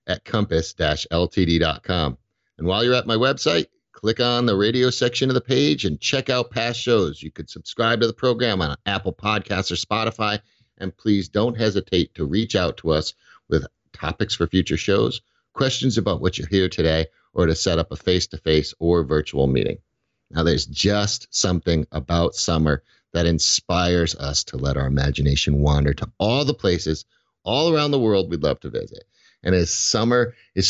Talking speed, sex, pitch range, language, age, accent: 185 wpm, male, 85-110 Hz, English, 50-69, American